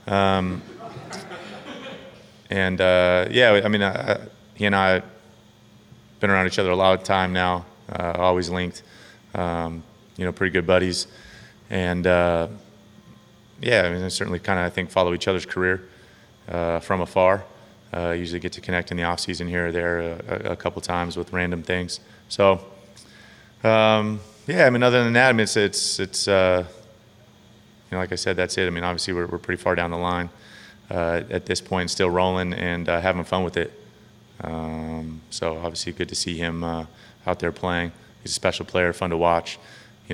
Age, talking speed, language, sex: 30-49, 190 wpm, English, male